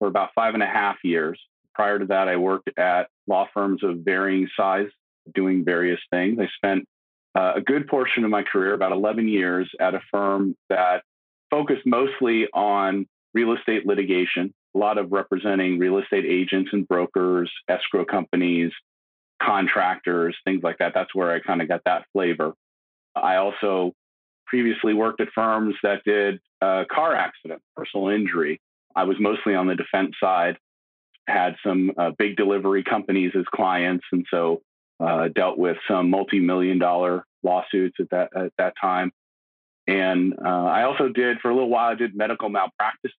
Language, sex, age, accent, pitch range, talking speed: English, male, 40-59, American, 90-110 Hz, 170 wpm